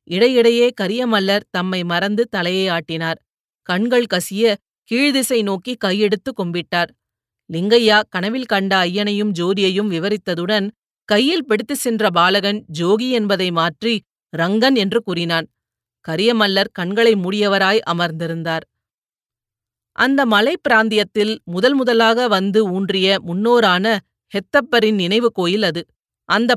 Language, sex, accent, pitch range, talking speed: Tamil, female, native, 185-230 Hz, 100 wpm